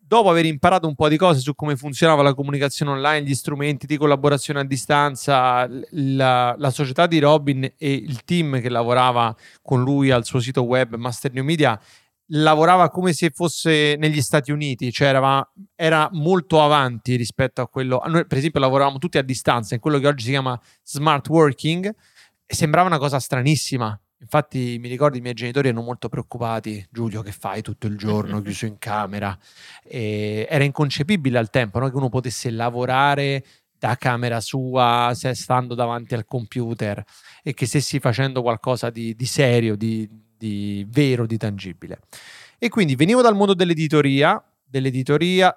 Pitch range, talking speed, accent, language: 120-155 Hz, 170 wpm, native, Italian